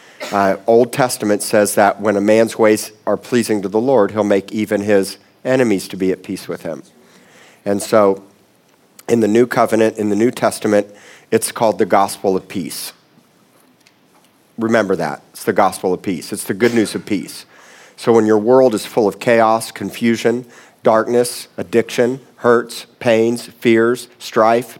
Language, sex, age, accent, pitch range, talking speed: English, male, 50-69, American, 110-130 Hz, 165 wpm